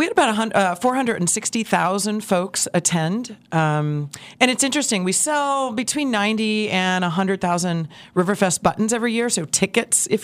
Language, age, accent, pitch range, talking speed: English, 40-59, American, 155-210 Hz, 140 wpm